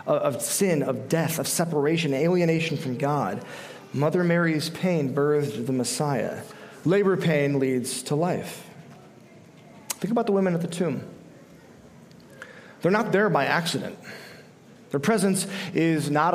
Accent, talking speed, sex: American, 130 wpm, male